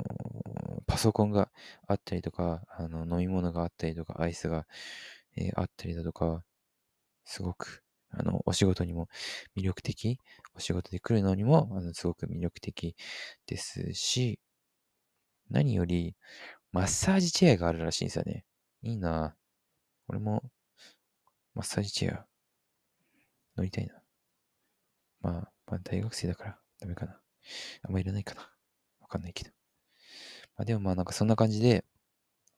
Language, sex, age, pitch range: English, male, 20-39, 90-120 Hz